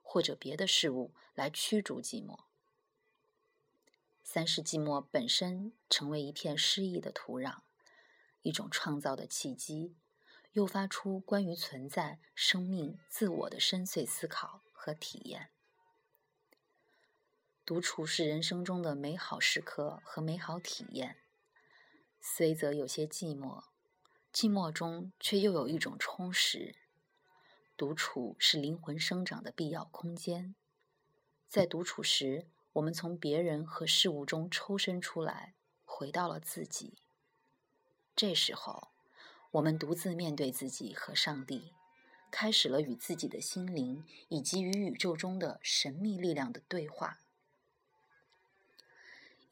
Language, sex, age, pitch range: Chinese, female, 20-39, 155-195 Hz